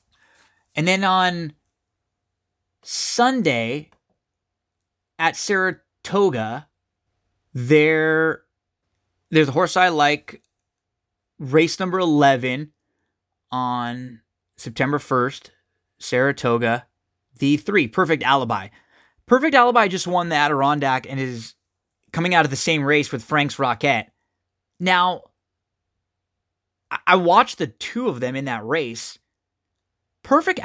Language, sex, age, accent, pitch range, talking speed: English, male, 20-39, American, 110-165 Hz, 100 wpm